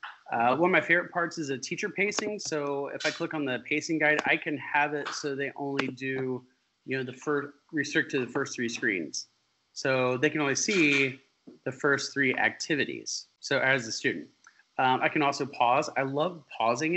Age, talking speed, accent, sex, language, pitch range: 30-49, 200 wpm, American, male, English, 130-155 Hz